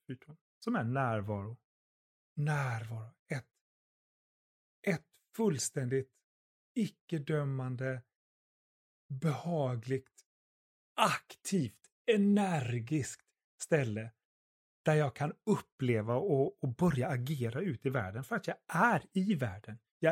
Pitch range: 120-160 Hz